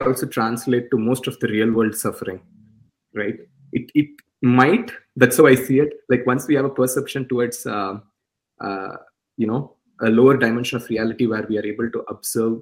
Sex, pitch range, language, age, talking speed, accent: male, 120-145 Hz, English, 20-39, 190 wpm, Indian